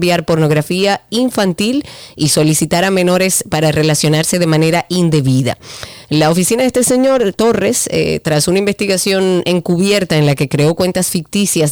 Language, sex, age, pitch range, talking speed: Spanish, female, 30-49, 155-190 Hz, 145 wpm